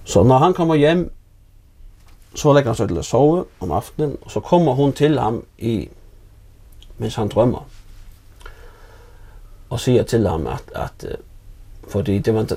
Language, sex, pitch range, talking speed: Danish, male, 100-120 Hz, 160 wpm